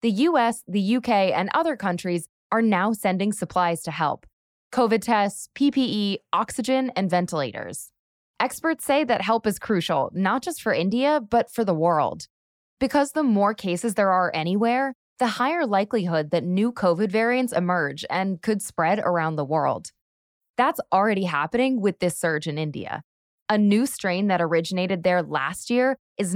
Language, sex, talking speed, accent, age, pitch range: English, female, 160 wpm, American, 20-39, 175-235 Hz